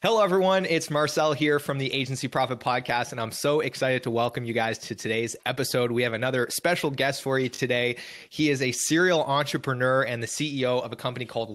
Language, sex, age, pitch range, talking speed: English, male, 30-49, 115-145 Hz, 215 wpm